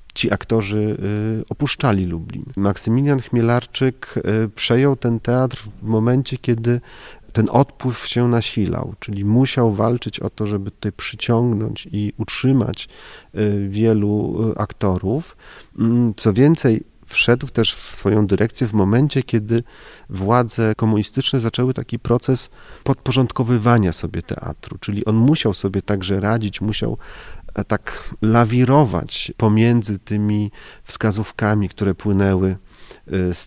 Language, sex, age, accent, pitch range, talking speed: Polish, male, 40-59, native, 105-135 Hz, 110 wpm